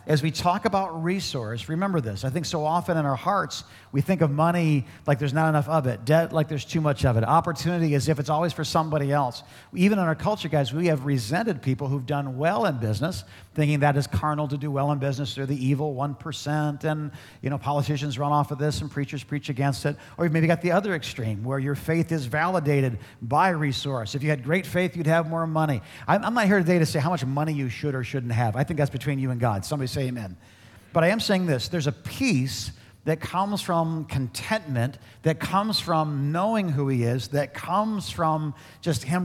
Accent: American